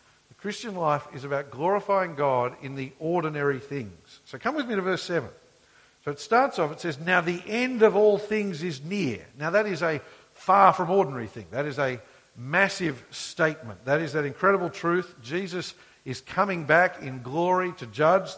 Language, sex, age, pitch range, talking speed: English, male, 50-69, 145-190 Hz, 185 wpm